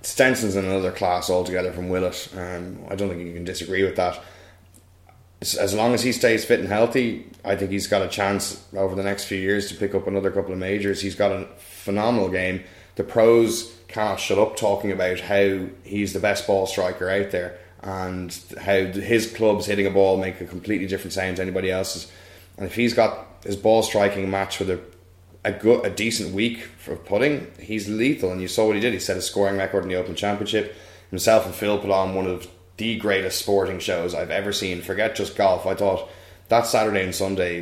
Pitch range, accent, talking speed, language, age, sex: 90-100 Hz, Irish, 215 wpm, English, 10-29, male